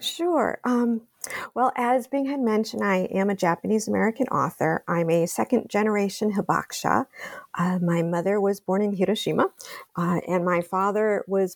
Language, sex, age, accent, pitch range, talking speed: English, female, 50-69, American, 170-215 Hz, 155 wpm